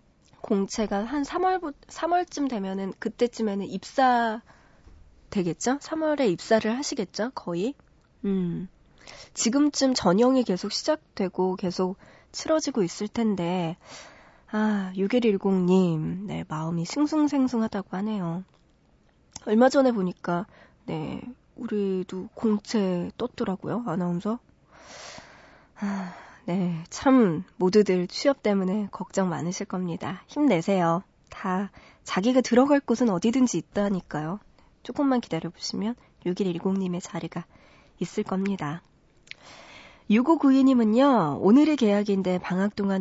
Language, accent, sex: Korean, native, female